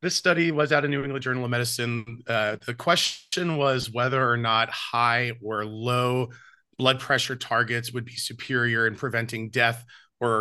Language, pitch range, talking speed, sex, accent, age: English, 120-145 Hz, 175 wpm, male, American, 30-49